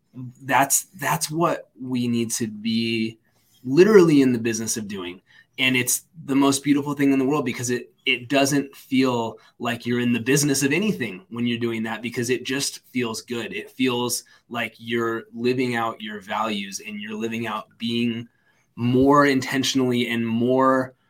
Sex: male